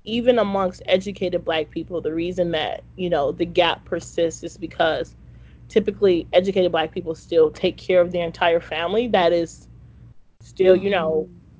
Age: 20-39